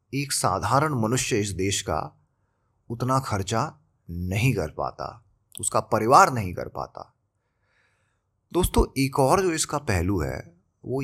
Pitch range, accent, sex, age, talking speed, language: 95-130 Hz, native, male, 30-49, 130 wpm, Hindi